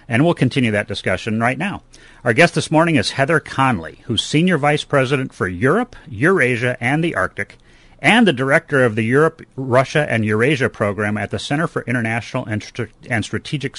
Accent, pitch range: American, 110-145 Hz